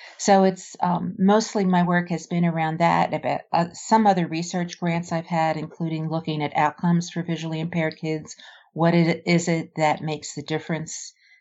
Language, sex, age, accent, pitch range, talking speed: English, female, 50-69, American, 155-180 Hz, 180 wpm